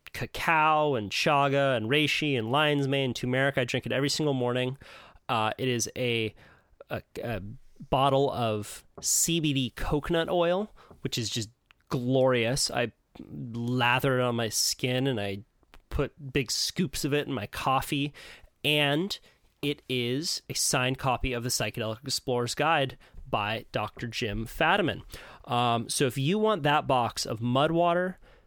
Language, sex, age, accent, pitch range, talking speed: English, male, 30-49, American, 120-150 Hz, 150 wpm